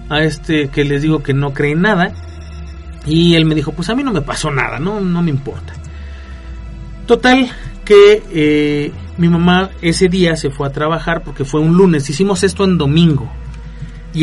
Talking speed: 190 wpm